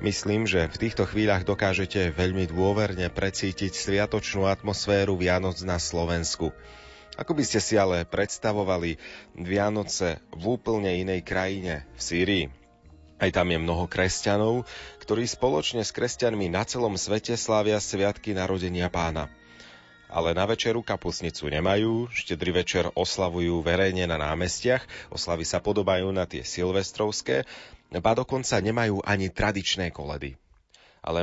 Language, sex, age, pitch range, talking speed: Slovak, male, 30-49, 85-105 Hz, 125 wpm